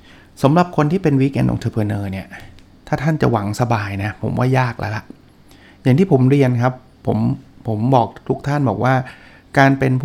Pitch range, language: 115-140 Hz, Thai